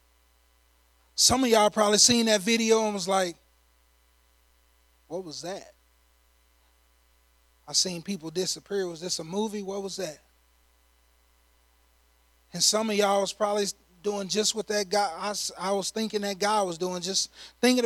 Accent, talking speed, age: American, 150 wpm, 30-49